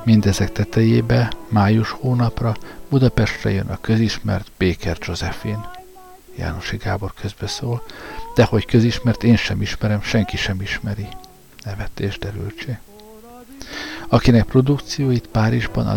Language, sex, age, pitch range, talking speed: Hungarian, male, 60-79, 105-125 Hz, 105 wpm